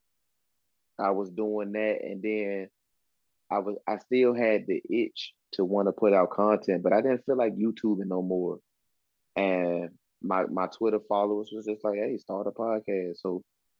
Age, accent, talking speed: 20-39, American, 175 wpm